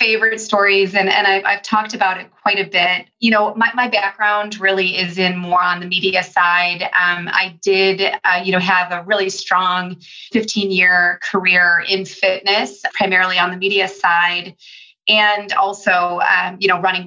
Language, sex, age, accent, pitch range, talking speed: English, female, 30-49, American, 190-220 Hz, 175 wpm